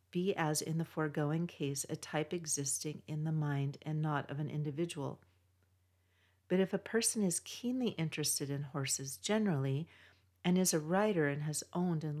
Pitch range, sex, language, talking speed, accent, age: 140-175 Hz, female, English, 170 wpm, American, 40-59